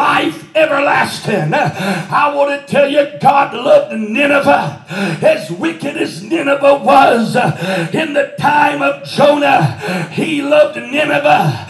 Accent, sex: American, male